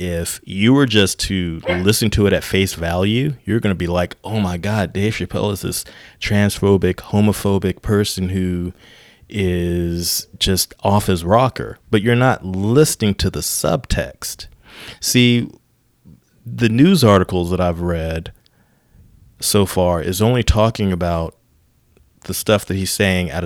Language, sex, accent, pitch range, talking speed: English, male, American, 90-105 Hz, 150 wpm